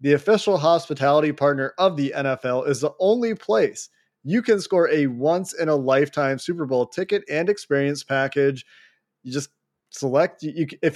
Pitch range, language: 135-170 Hz, English